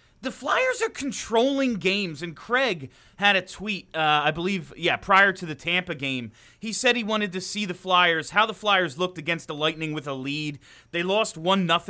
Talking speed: 200 wpm